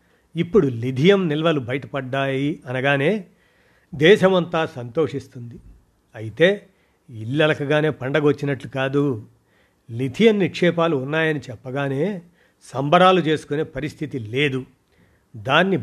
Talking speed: 80 wpm